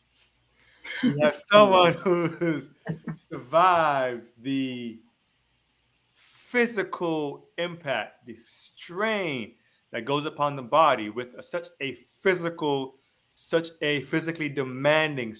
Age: 30-49